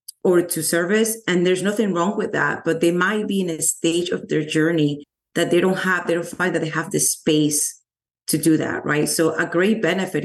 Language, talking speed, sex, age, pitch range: English, 230 wpm, female, 30-49, 155-185 Hz